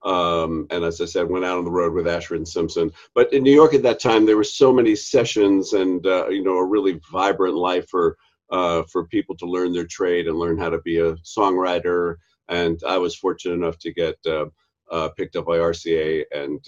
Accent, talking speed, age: American, 225 wpm, 50-69